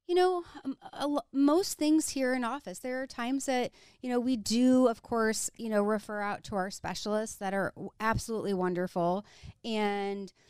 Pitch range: 190-245 Hz